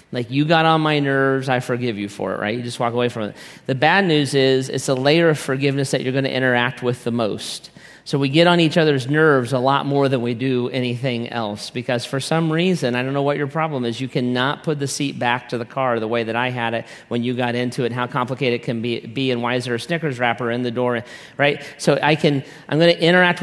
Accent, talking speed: American, 265 wpm